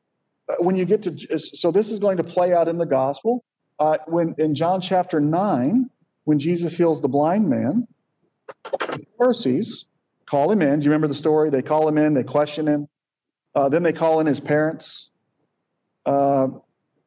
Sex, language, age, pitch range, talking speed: male, English, 40-59, 145-185 Hz, 180 wpm